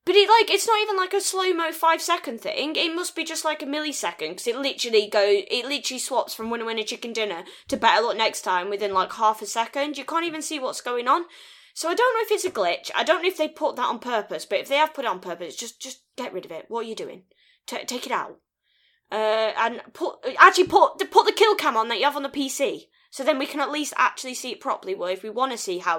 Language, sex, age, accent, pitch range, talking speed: English, female, 20-39, British, 225-350 Hz, 285 wpm